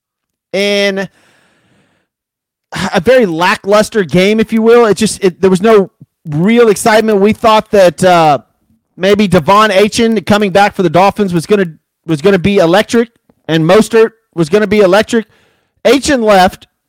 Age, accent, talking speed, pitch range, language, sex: 30-49, American, 155 wpm, 180-220 Hz, English, male